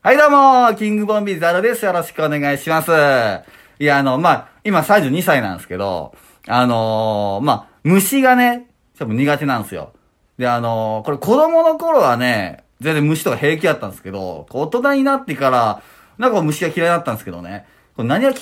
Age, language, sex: 30-49, Japanese, male